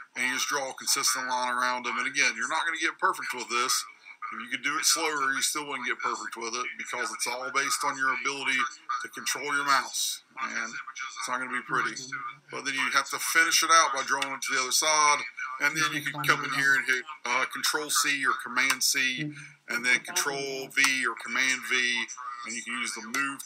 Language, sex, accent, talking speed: English, male, American, 230 wpm